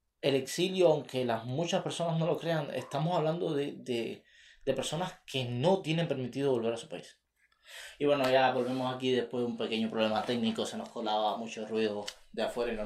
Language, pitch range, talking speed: Spanish, 120-150 Hz, 200 wpm